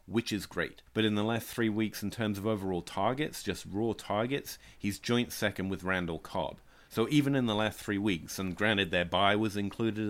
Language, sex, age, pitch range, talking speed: English, male, 30-49, 90-110 Hz, 215 wpm